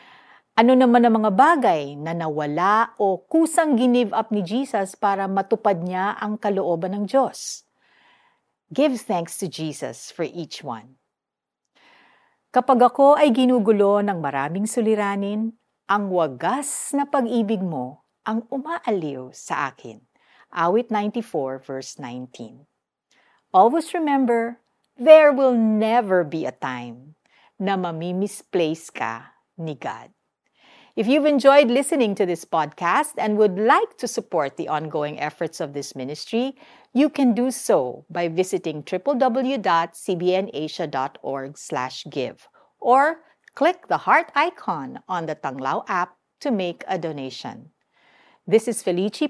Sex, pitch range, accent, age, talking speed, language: female, 165-245 Hz, native, 50-69, 125 wpm, Filipino